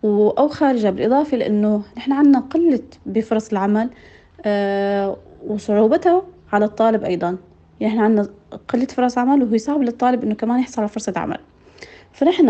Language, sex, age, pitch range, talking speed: Arabic, female, 30-49, 200-250 Hz, 140 wpm